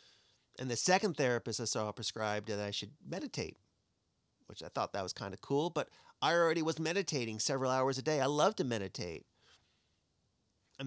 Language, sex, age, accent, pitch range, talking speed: English, male, 40-59, American, 105-135 Hz, 180 wpm